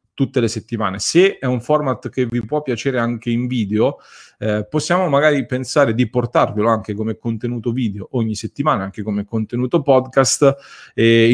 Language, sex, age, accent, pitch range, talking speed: English, male, 30-49, Italian, 115-135 Hz, 165 wpm